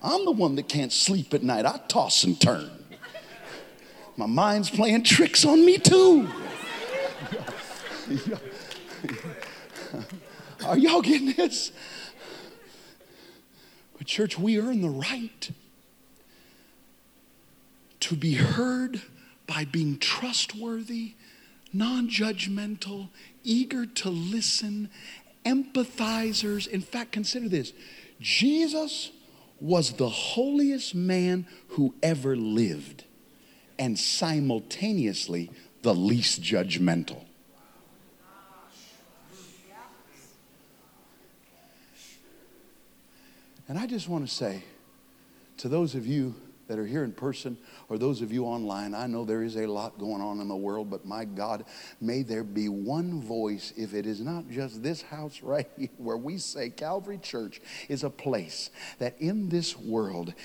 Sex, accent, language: male, American, English